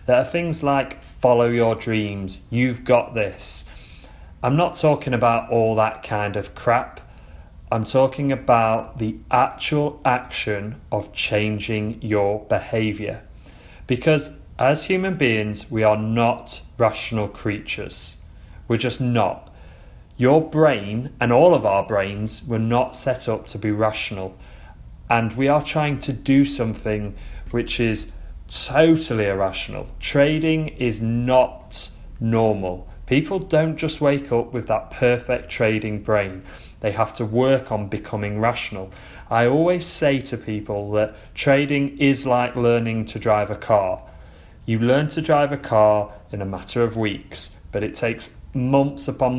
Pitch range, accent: 105-130 Hz, British